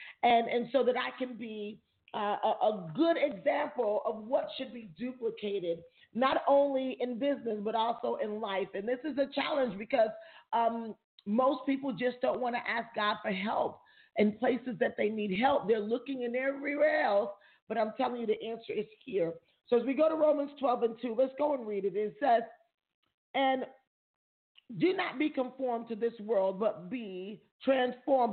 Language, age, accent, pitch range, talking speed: English, 40-59, American, 210-275 Hz, 185 wpm